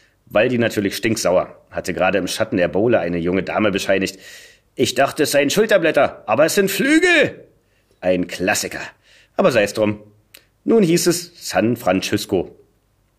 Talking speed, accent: 150 wpm, German